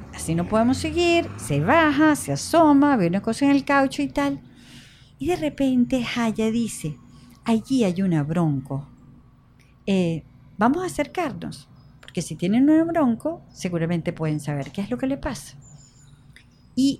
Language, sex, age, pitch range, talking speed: Spanish, female, 50-69, 145-240 Hz, 155 wpm